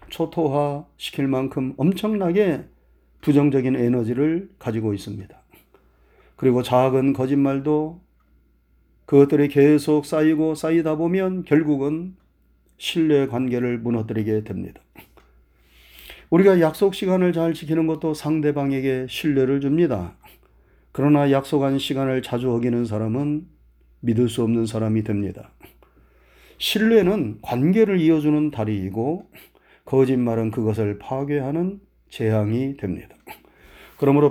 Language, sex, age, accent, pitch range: Korean, male, 40-59, native, 110-160 Hz